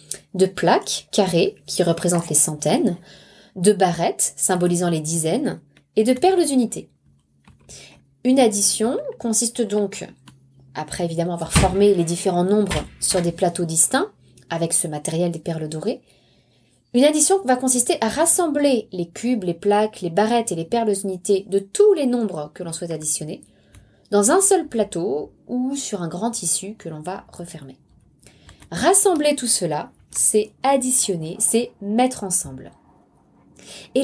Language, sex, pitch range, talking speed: French, female, 170-250 Hz, 145 wpm